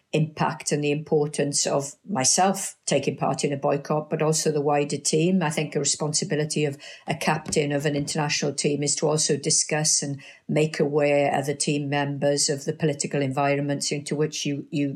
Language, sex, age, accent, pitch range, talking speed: English, female, 50-69, British, 145-165 Hz, 185 wpm